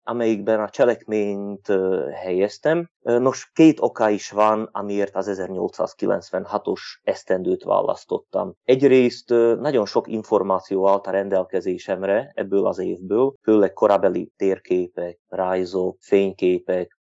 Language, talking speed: Hungarian, 100 wpm